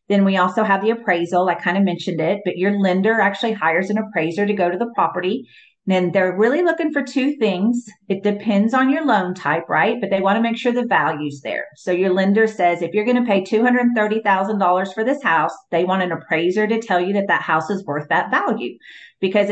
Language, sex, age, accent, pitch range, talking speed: English, female, 40-59, American, 180-215 Hz, 230 wpm